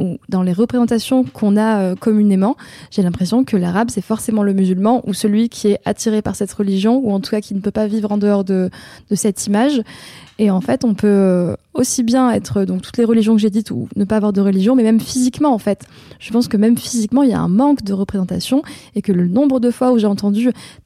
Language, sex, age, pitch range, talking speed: French, female, 20-39, 200-245 Hz, 245 wpm